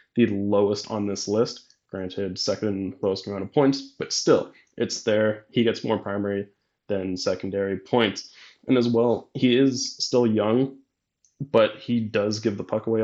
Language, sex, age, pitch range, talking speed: English, male, 20-39, 100-115 Hz, 165 wpm